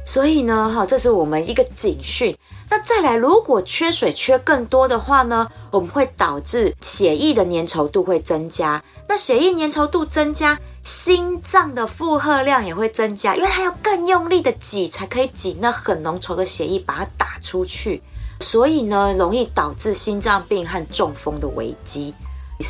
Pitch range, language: 185-305 Hz, Chinese